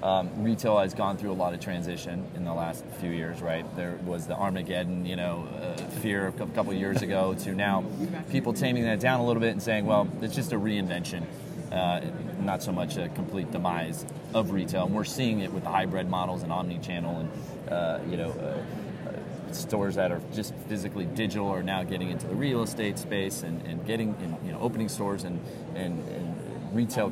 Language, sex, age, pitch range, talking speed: English, male, 30-49, 90-115 Hz, 205 wpm